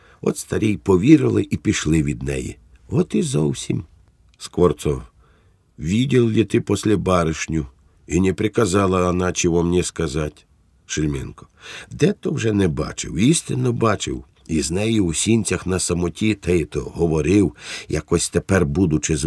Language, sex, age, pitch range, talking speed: Ukrainian, male, 50-69, 75-100 Hz, 130 wpm